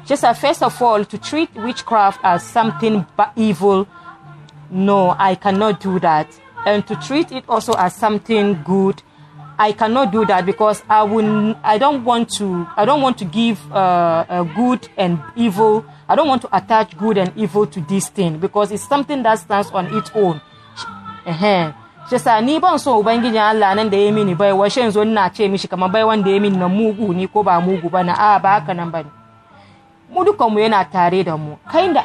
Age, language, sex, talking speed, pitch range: 30-49, English, female, 135 wpm, 175-220 Hz